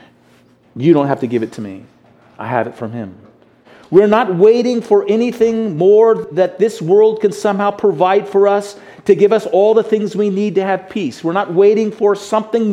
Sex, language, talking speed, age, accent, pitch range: male, English, 205 wpm, 40-59, American, 170-220 Hz